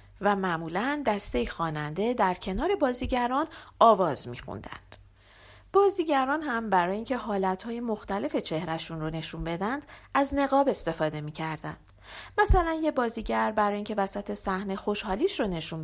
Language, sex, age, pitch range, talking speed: Persian, female, 40-59, 165-265 Hz, 125 wpm